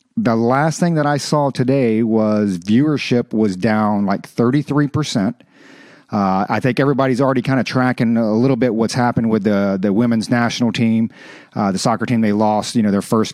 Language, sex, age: English, male, 40-59